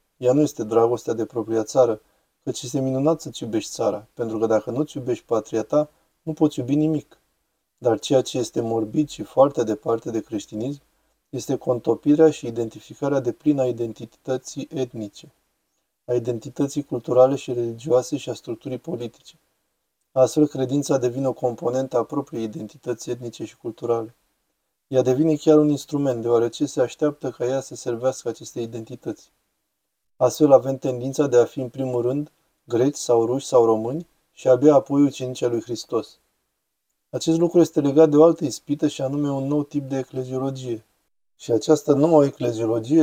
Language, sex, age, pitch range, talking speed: Romanian, male, 20-39, 120-150 Hz, 160 wpm